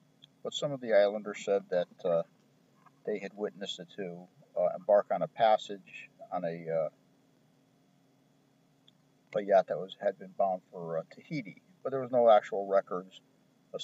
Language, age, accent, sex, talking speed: English, 50-69, American, male, 165 wpm